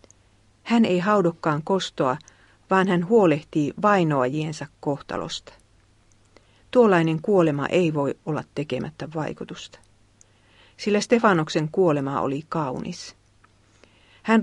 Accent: native